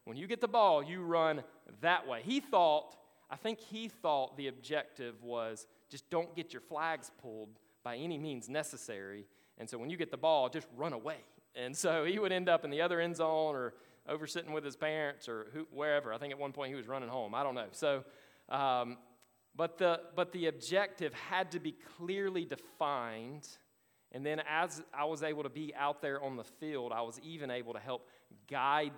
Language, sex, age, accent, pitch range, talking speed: English, male, 30-49, American, 125-165 Hz, 210 wpm